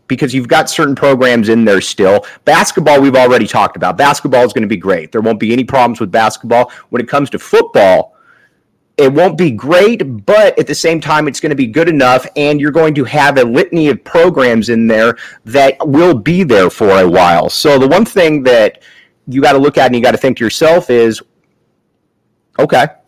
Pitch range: 115-150 Hz